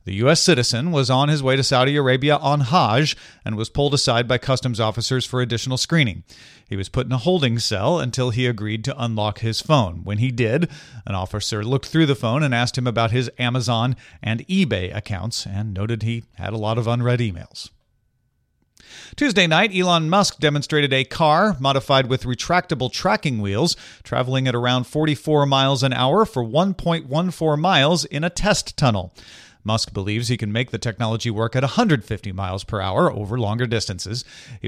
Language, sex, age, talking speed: English, male, 40-59, 185 wpm